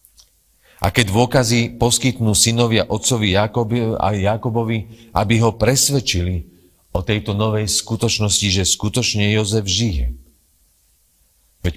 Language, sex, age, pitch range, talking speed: Czech, male, 40-59, 80-110 Hz, 100 wpm